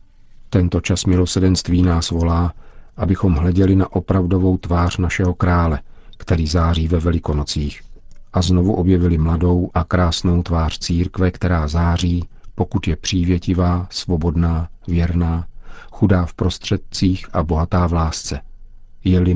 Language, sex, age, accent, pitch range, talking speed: Czech, male, 50-69, native, 80-95 Hz, 120 wpm